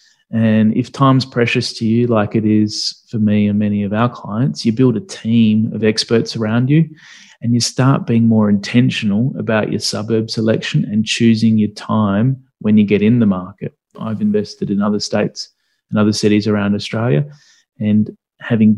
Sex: male